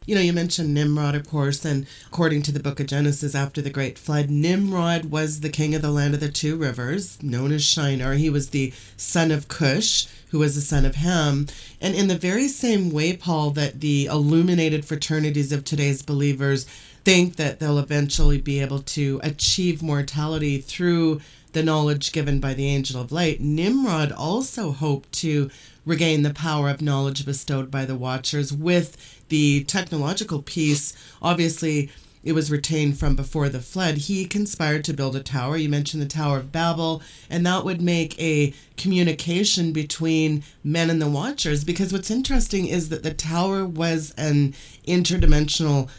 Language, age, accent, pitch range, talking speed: English, 30-49, American, 145-165 Hz, 175 wpm